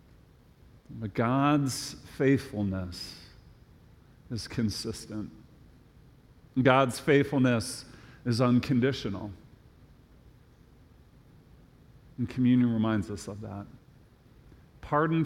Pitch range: 110-130 Hz